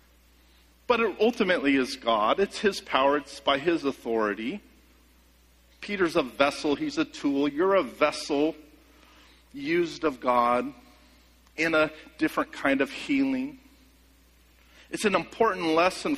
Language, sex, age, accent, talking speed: English, male, 50-69, American, 125 wpm